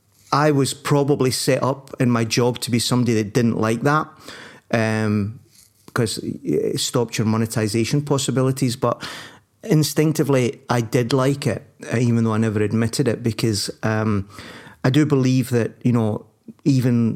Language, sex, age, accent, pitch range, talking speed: English, male, 40-59, British, 110-135 Hz, 150 wpm